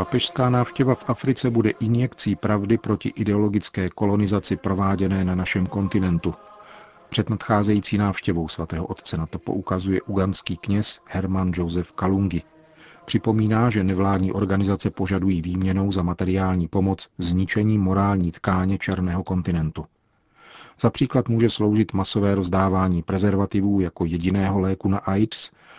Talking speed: 125 wpm